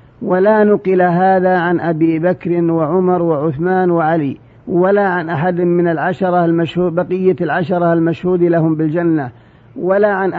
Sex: male